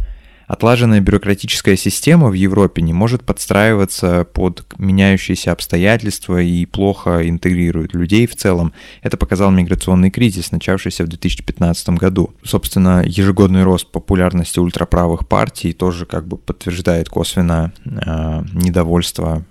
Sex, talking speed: male, 115 wpm